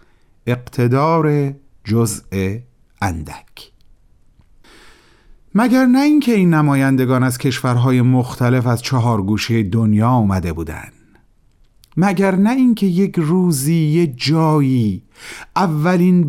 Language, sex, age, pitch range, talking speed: Persian, male, 40-59, 120-185 Hz, 90 wpm